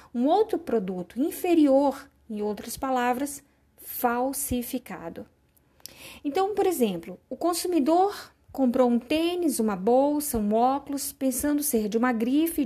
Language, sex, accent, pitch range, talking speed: Portuguese, female, Brazilian, 220-300 Hz, 120 wpm